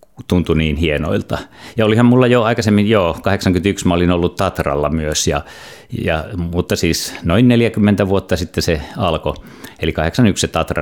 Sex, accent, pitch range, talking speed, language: male, native, 80-100 Hz, 145 wpm, Finnish